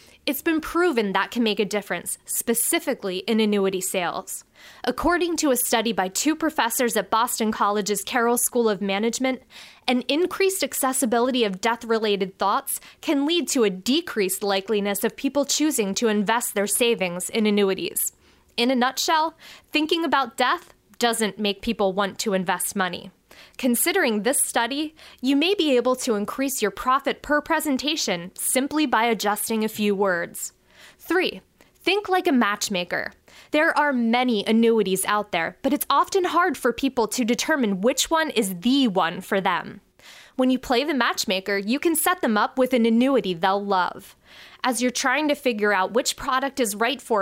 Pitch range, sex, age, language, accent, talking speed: 210-280 Hz, female, 20-39, English, American, 165 wpm